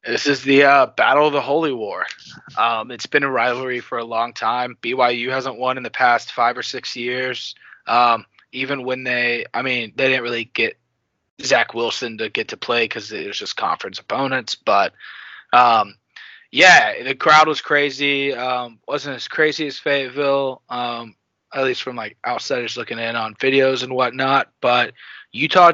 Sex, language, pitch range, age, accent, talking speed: male, English, 115-140 Hz, 20-39, American, 180 wpm